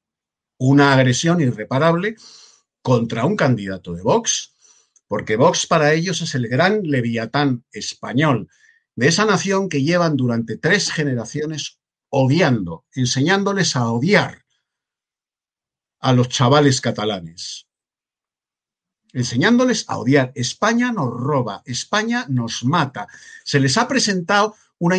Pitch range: 125-200 Hz